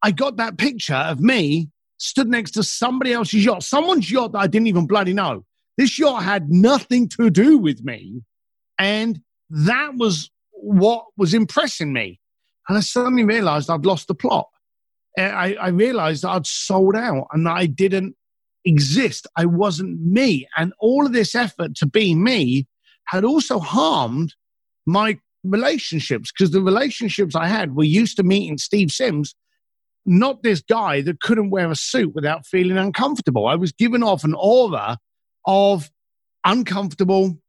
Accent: British